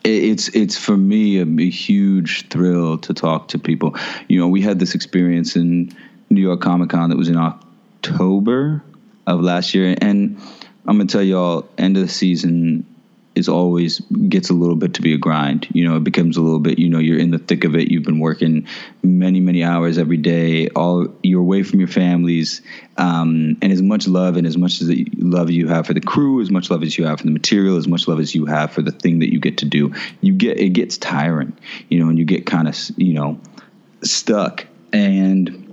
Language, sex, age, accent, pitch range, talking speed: English, male, 20-39, American, 80-95 Hz, 225 wpm